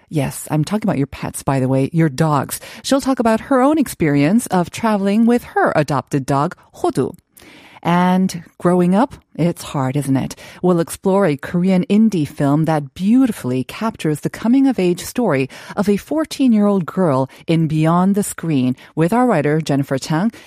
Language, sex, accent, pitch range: Korean, female, American, 150-215 Hz